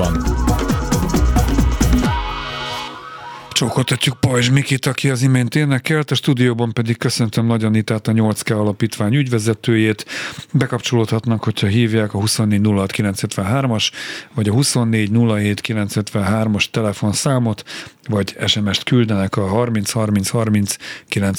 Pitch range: 105-125 Hz